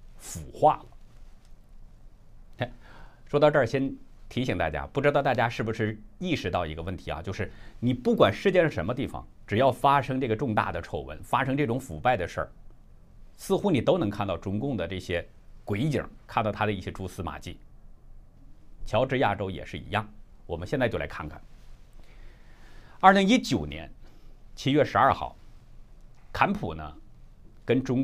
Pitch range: 85-130 Hz